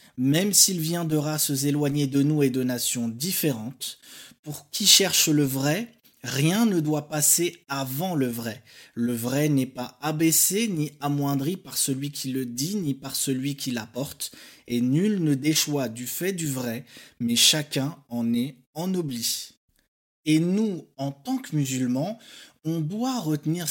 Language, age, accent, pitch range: French, 20-39, French, 130-165 Hz